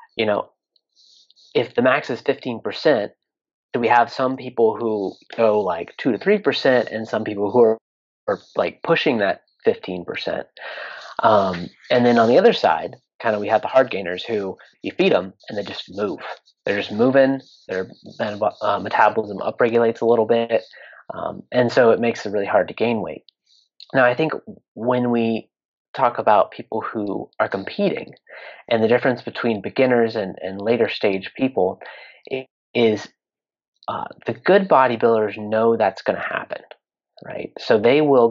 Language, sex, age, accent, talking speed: English, male, 30-49, American, 170 wpm